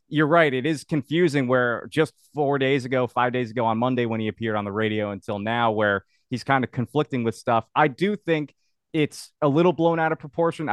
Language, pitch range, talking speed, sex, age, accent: English, 110-135 Hz, 225 wpm, male, 30-49, American